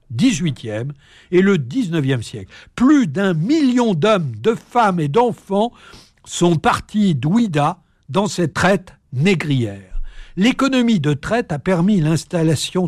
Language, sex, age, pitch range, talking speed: French, male, 60-79, 135-205 Hz, 120 wpm